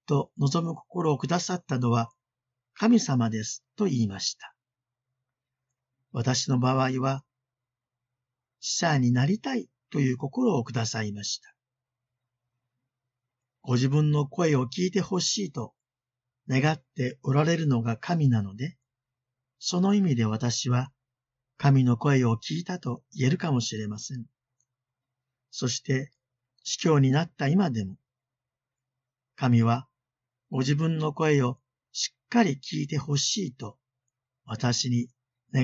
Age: 50-69